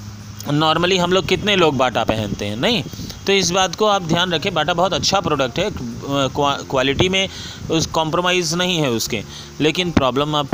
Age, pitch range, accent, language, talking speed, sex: 30-49, 130-190 Hz, native, Hindi, 190 wpm, male